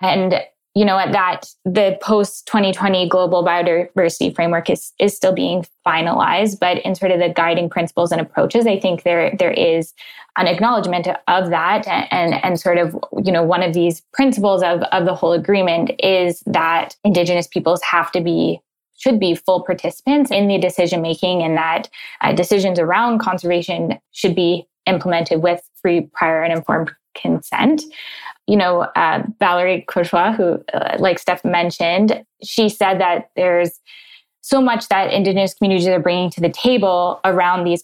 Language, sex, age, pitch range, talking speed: English, female, 10-29, 170-195 Hz, 165 wpm